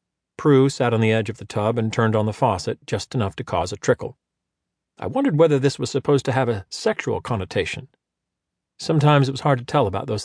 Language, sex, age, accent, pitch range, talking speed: English, male, 40-59, American, 105-150 Hz, 220 wpm